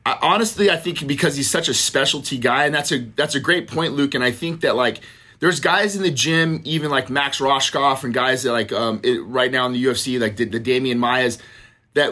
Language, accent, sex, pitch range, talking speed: English, American, male, 125-165 Hz, 245 wpm